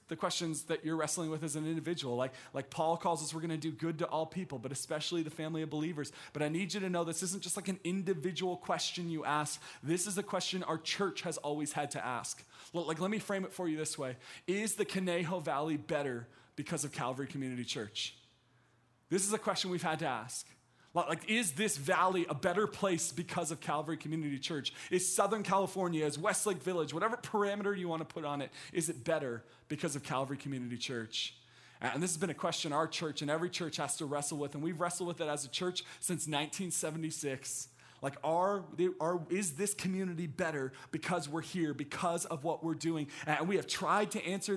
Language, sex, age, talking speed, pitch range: English, male, 20-39, 215 wpm, 150-190 Hz